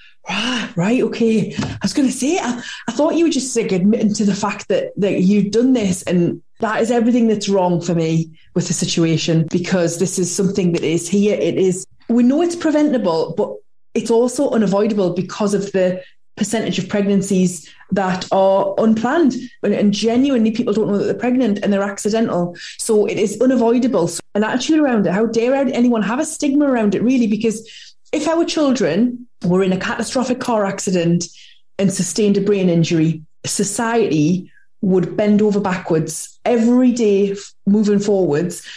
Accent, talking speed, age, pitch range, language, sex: British, 175 wpm, 20-39, 185-240 Hz, English, female